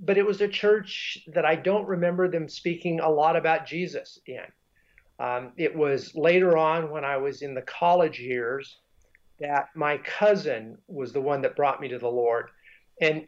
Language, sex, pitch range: Ukrainian, male, 145-180 Hz